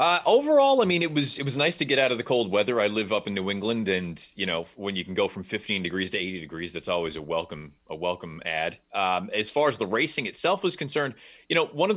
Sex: male